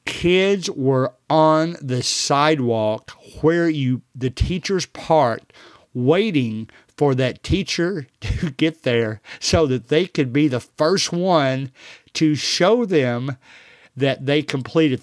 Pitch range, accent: 125-155 Hz, American